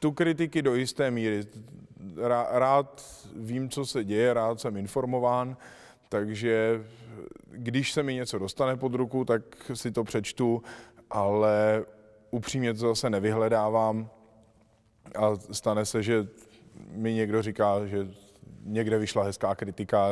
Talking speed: 125 wpm